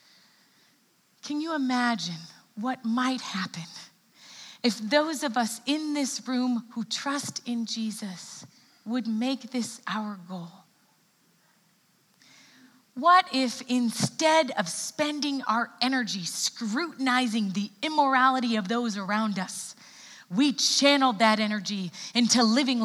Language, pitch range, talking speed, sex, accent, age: English, 200-255 Hz, 110 wpm, female, American, 30-49